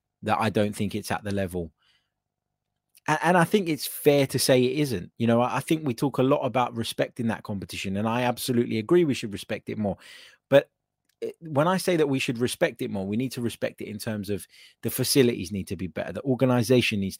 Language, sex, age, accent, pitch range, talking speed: English, male, 20-39, British, 105-135 Hz, 225 wpm